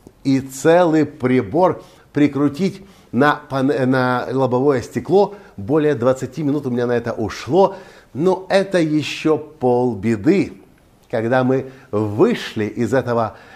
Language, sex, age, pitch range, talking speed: Russian, male, 50-69, 120-160 Hz, 110 wpm